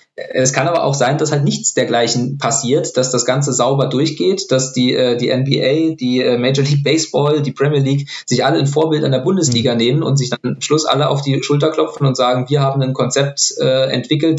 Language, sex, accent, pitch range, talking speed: German, male, German, 125-145 Hz, 215 wpm